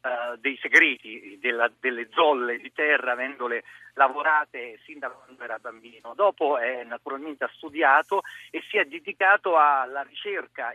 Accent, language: native, Italian